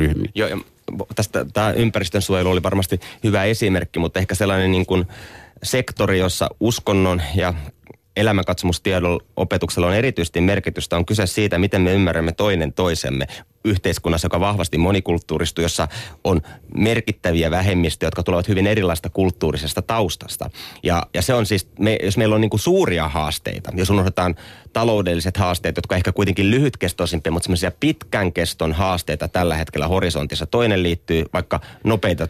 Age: 30-49